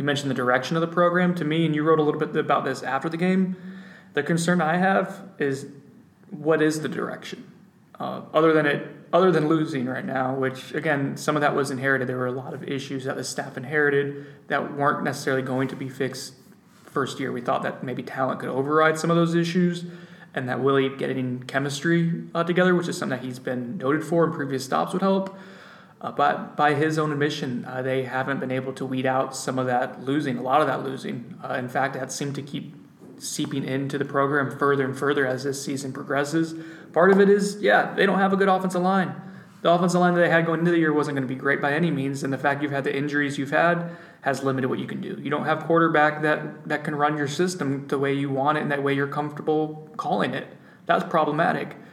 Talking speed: 235 wpm